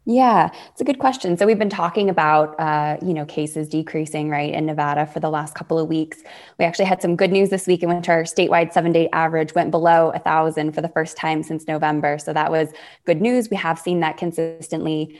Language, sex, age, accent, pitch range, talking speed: English, female, 20-39, American, 155-180 Hz, 225 wpm